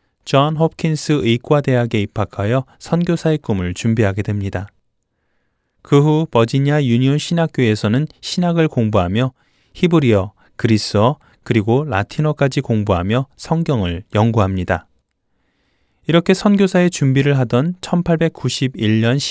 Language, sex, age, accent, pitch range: Korean, male, 20-39, native, 105-145 Hz